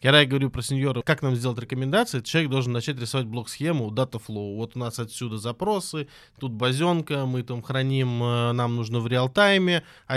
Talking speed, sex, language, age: 185 wpm, male, Russian, 20-39